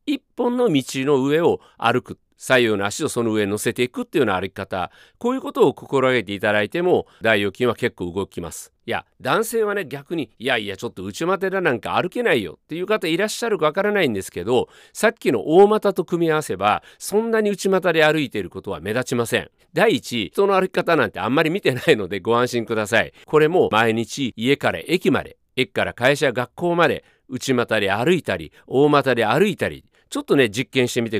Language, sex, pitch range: Japanese, male, 115-180 Hz